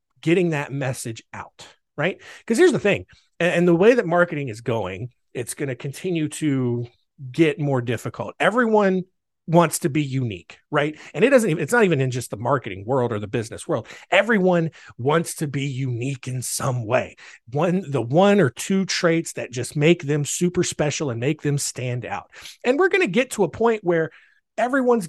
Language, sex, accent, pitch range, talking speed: English, male, American, 125-175 Hz, 195 wpm